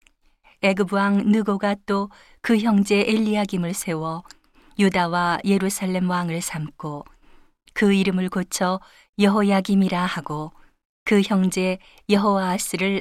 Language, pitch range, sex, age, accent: Korean, 175-205 Hz, female, 40-59, native